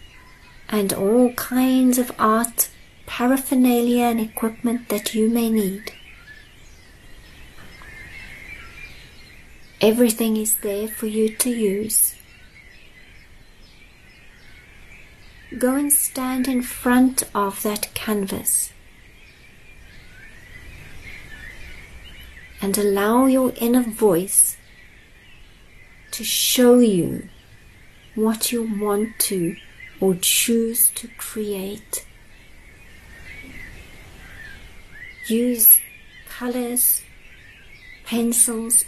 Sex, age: female, 40-59